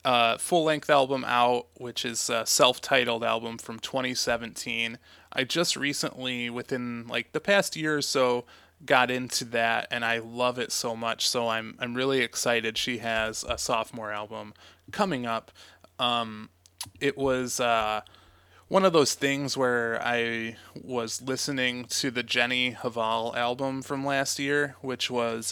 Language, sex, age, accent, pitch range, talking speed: English, male, 20-39, American, 115-135 Hz, 150 wpm